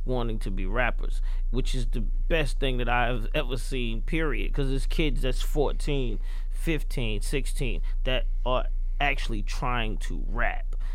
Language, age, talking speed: English, 30-49, 150 wpm